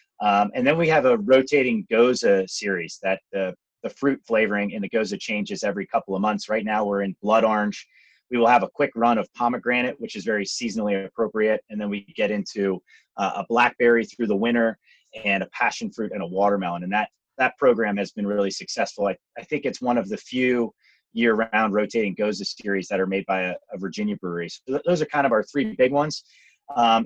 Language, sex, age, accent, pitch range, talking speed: English, male, 30-49, American, 100-125 Hz, 215 wpm